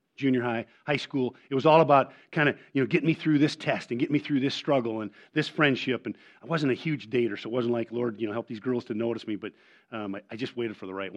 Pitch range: 120-160 Hz